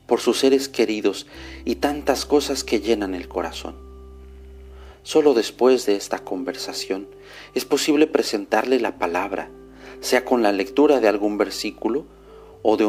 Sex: male